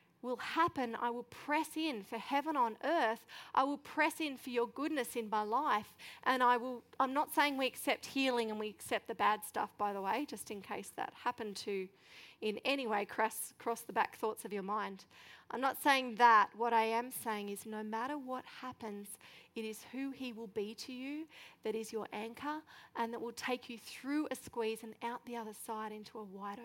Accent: Australian